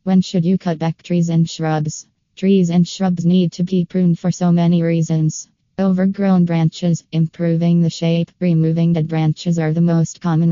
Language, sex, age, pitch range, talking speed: English, female, 20-39, 160-180 Hz, 175 wpm